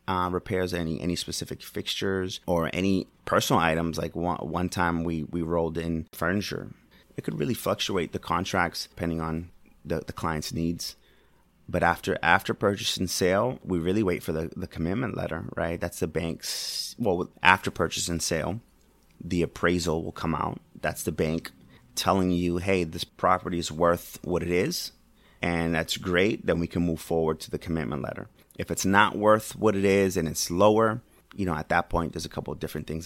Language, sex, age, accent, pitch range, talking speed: English, male, 30-49, American, 80-90 Hz, 190 wpm